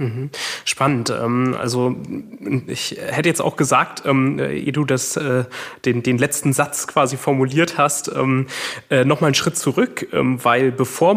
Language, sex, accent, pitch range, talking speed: German, male, German, 125-150 Hz, 125 wpm